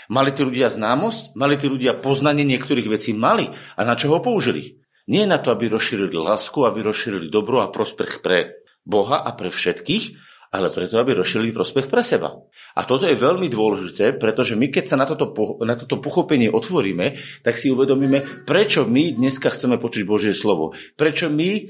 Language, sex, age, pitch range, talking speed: Slovak, male, 50-69, 110-145 Hz, 185 wpm